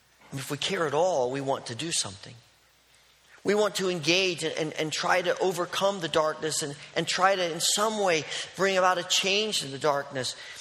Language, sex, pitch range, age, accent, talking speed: English, male, 150-185 Hz, 40-59, American, 205 wpm